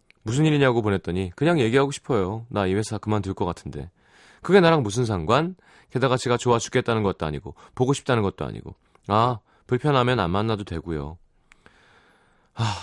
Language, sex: Korean, male